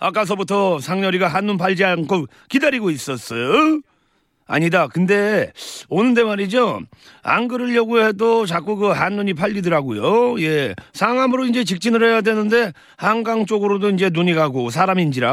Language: Korean